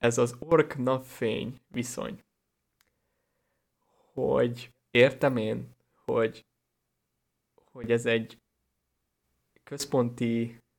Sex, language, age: male, Hungarian, 20-39